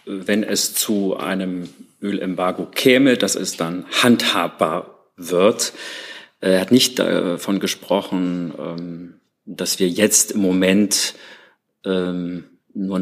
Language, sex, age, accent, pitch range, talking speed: German, male, 40-59, German, 90-100 Hz, 100 wpm